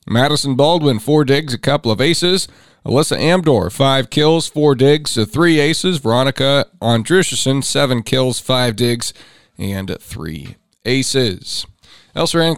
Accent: American